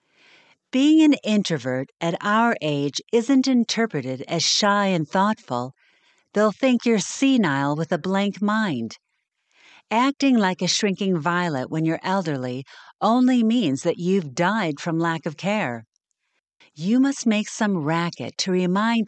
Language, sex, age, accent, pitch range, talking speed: English, female, 50-69, American, 145-225 Hz, 140 wpm